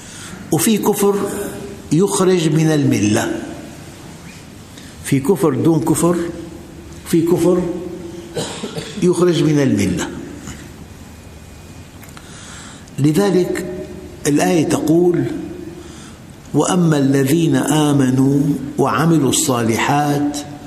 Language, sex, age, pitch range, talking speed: Arabic, male, 60-79, 130-160 Hz, 65 wpm